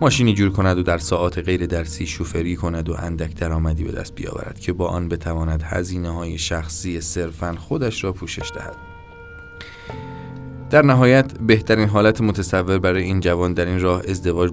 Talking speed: 165 wpm